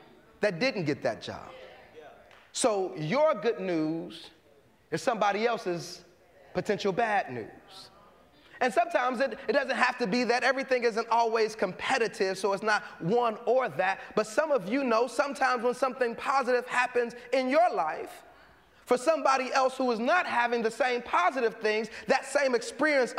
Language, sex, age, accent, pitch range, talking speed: English, male, 30-49, American, 235-310 Hz, 160 wpm